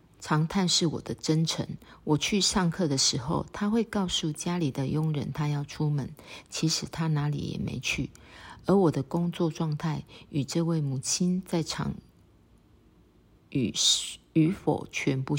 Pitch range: 145-175 Hz